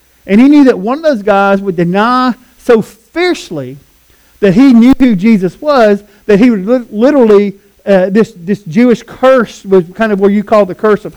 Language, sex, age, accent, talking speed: English, male, 40-59, American, 200 wpm